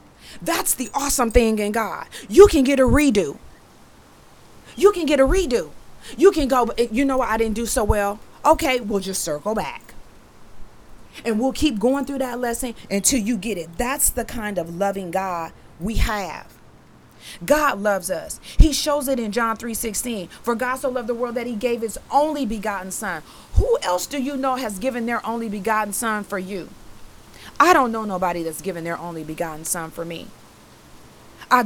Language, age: English, 30-49